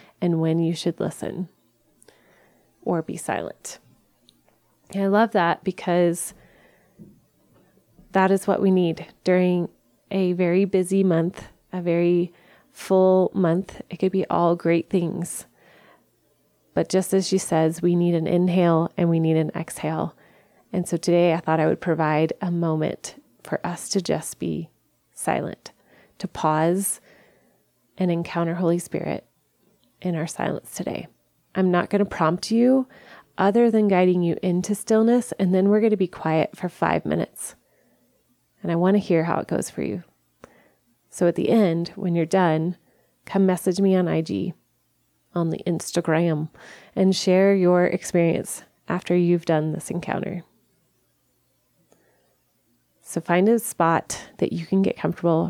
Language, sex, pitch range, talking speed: English, female, 165-190 Hz, 150 wpm